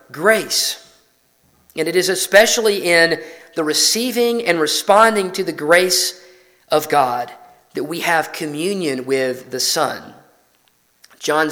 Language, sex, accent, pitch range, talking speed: English, male, American, 140-195 Hz, 120 wpm